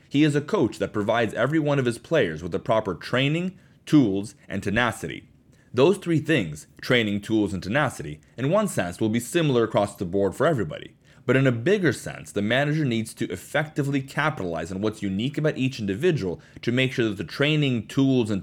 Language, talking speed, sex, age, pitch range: English, 200 wpm, male, 30-49, 105-145 Hz